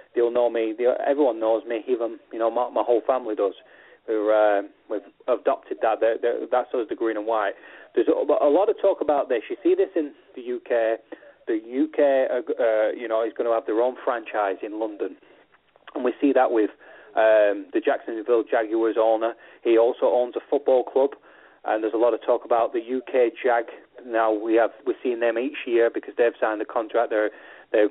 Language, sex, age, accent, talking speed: English, male, 30-49, British, 205 wpm